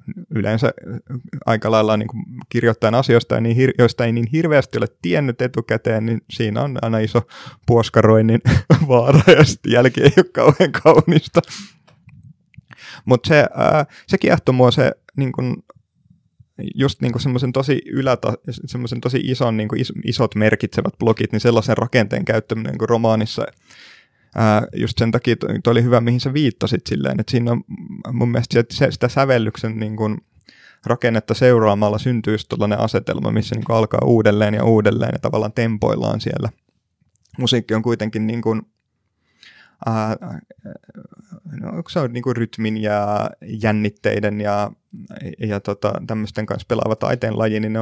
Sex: male